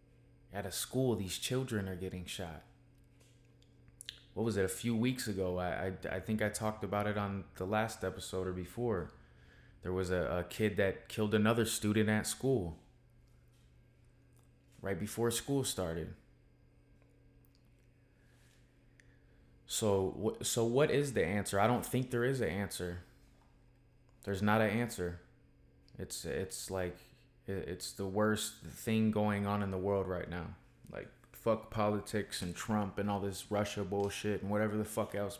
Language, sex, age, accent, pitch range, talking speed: English, male, 20-39, American, 95-120 Hz, 155 wpm